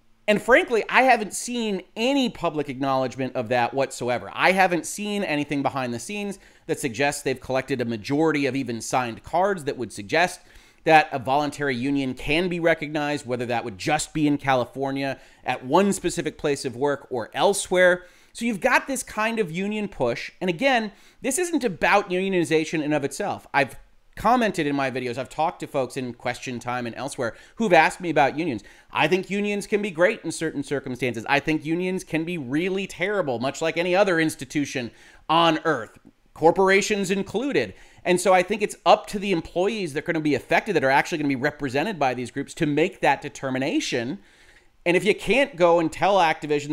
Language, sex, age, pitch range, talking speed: English, male, 30-49, 135-185 Hz, 195 wpm